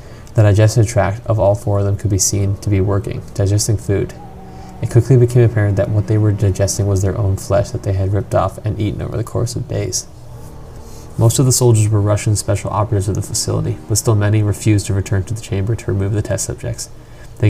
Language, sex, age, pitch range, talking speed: English, male, 20-39, 100-120 Hz, 230 wpm